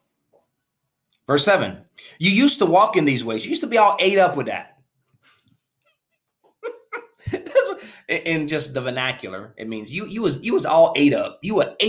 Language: English